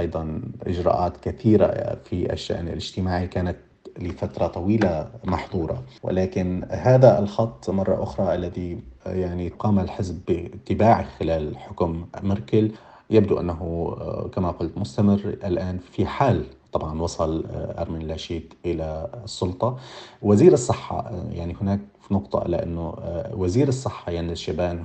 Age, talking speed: 30-49, 115 wpm